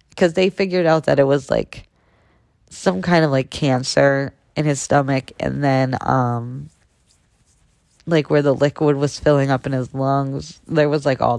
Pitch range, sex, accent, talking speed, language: 130-150 Hz, female, American, 175 wpm, English